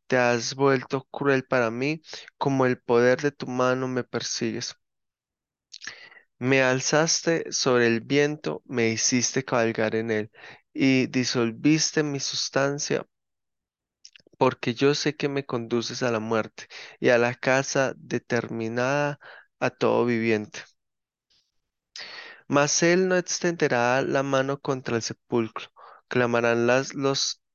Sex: male